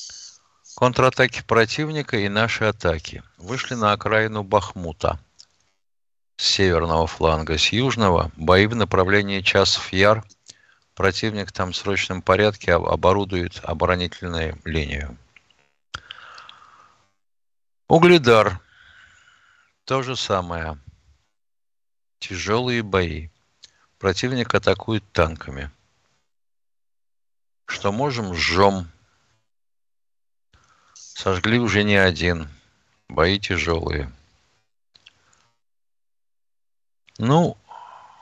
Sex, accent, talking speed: male, native, 70 wpm